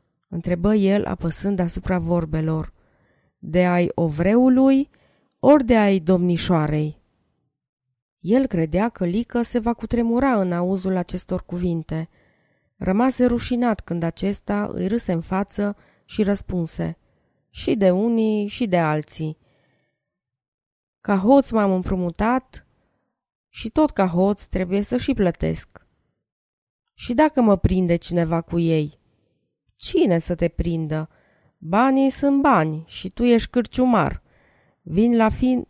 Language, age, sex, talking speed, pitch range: Romanian, 20-39, female, 120 wpm, 160-235 Hz